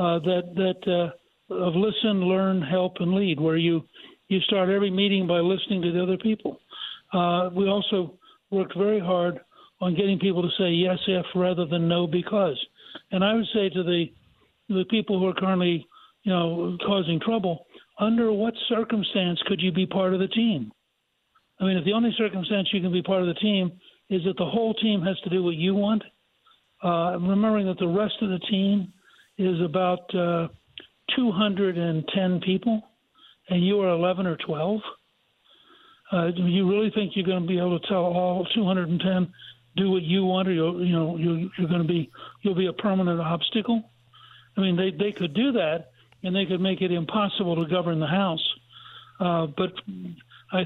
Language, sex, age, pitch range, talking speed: English, male, 60-79, 175-205 Hz, 190 wpm